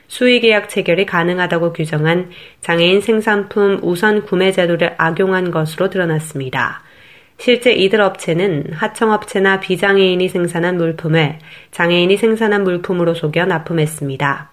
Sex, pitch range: female, 170-205 Hz